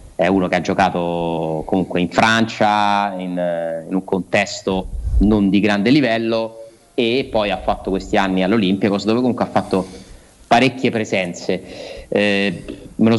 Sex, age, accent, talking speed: male, 30-49, native, 145 wpm